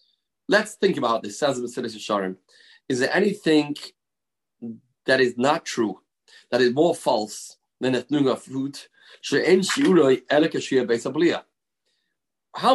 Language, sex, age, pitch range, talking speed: English, male, 30-49, 140-200 Hz, 90 wpm